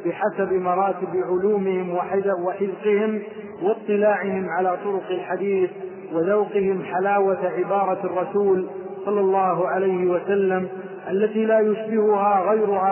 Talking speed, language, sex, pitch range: 95 wpm, Arabic, male, 190-215 Hz